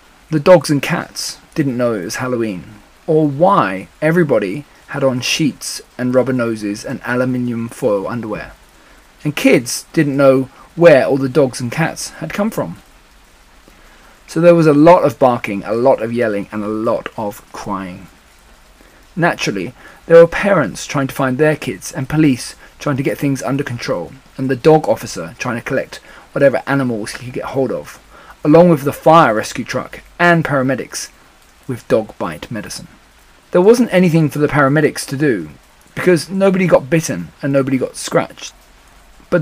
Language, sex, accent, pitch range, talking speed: English, male, British, 125-165 Hz, 170 wpm